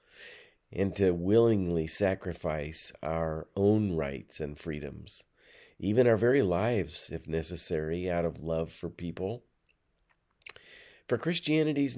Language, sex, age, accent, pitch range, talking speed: English, male, 50-69, American, 85-115 Hz, 110 wpm